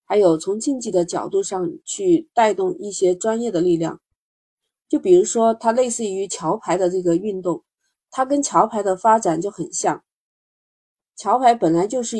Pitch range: 180-240 Hz